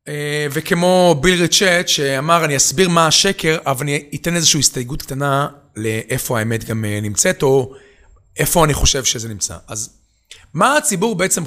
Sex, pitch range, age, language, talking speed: male, 135-180 Hz, 30-49, Hebrew, 145 wpm